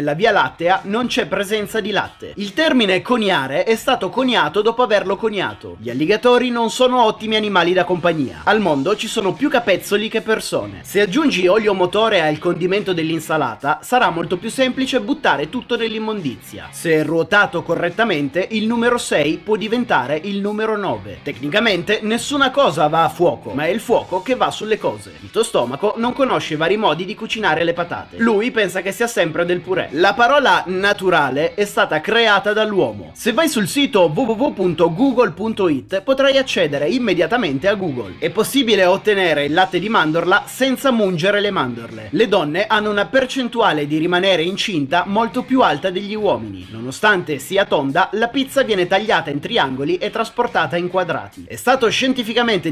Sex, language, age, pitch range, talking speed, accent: male, Italian, 30-49, 180-235 Hz, 170 wpm, native